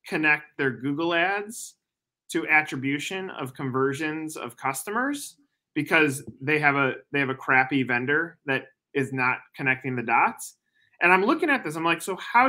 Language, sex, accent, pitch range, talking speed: English, male, American, 130-165 Hz, 165 wpm